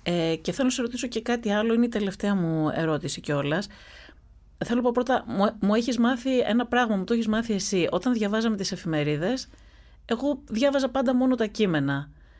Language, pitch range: Greek, 170-240 Hz